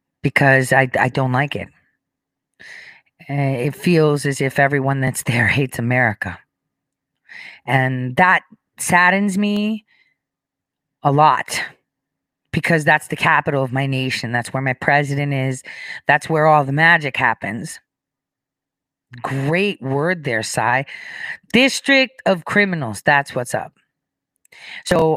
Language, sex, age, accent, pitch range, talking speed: English, female, 40-59, American, 130-175 Hz, 120 wpm